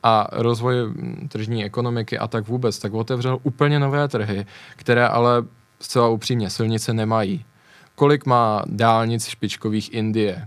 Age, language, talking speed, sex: 20-39, Czech, 130 wpm, male